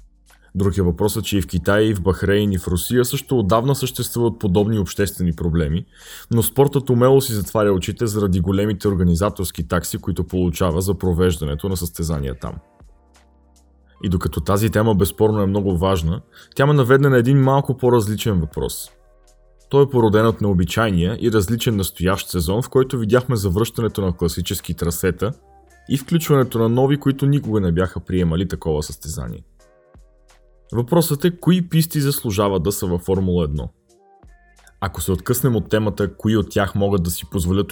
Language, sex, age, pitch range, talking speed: Bulgarian, male, 20-39, 85-115 Hz, 160 wpm